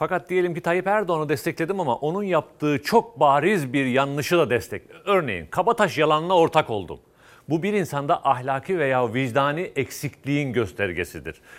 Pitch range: 125-170 Hz